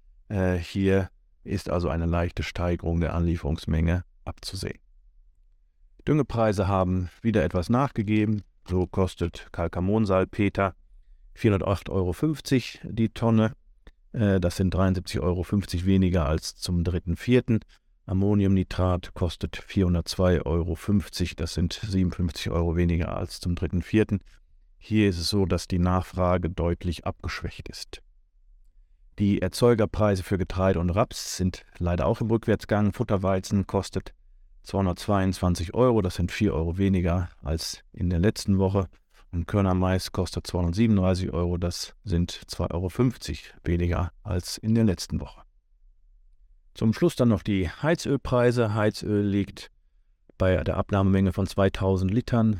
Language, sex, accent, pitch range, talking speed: German, male, German, 85-100 Hz, 120 wpm